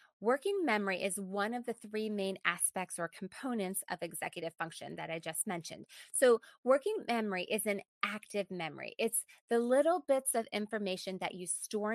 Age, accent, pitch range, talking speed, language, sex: 30-49, American, 190-235 Hz, 170 wpm, English, female